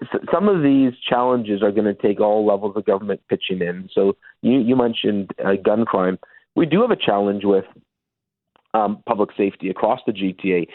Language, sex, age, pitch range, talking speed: English, male, 40-59, 105-125 Hz, 185 wpm